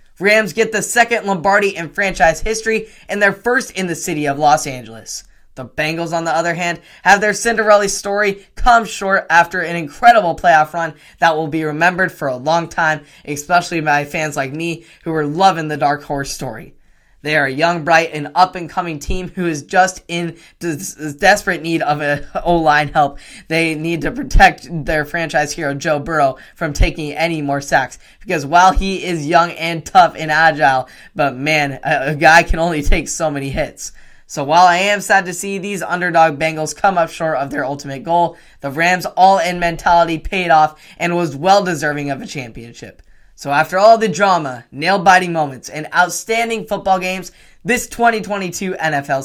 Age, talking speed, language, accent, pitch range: 10-29, 180 wpm, English, American, 150-190 Hz